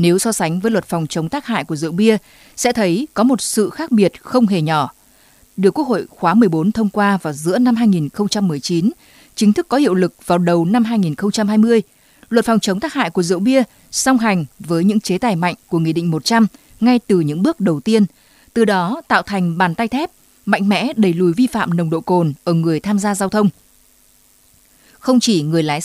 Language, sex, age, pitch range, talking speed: Vietnamese, female, 20-39, 175-230 Hz, 215 wpm